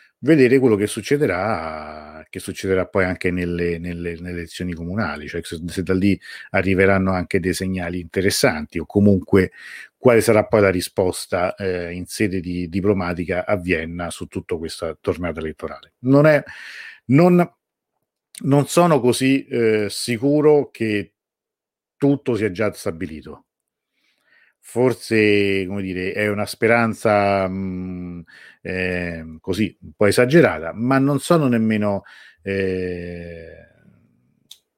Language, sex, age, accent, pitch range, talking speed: Italian, male, 50-69, native, 95-130 Hz, 125 wpm